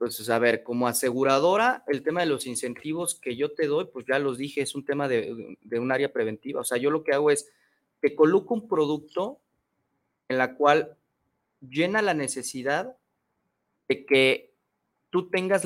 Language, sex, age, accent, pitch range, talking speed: Spanish, male, 30-49, Mexican, 125-160 Hz, 180 wpm